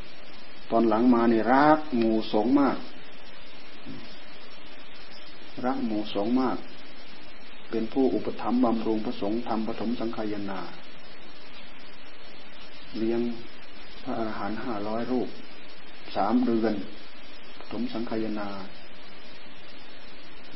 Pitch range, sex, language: 110-125 Hz, male, Thai